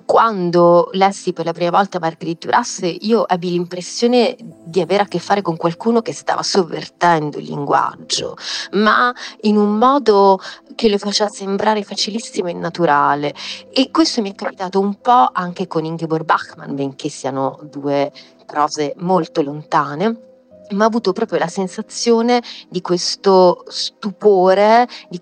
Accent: native